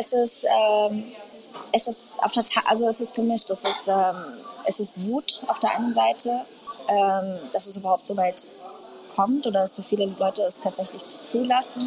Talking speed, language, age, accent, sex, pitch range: 185 wpm, German, 20-39, German, female, 200-250 Hz